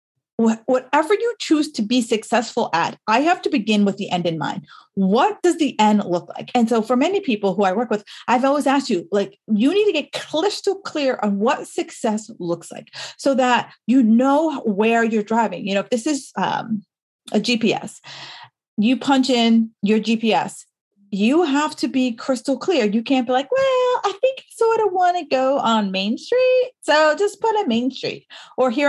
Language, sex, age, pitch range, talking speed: English, female, 40-59, 215-285 Hz, 200 wpm